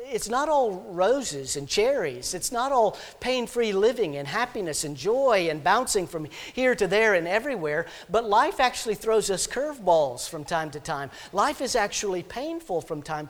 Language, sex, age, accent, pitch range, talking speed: English, male, 50-69, American, 170-240 Hz, 175 wpm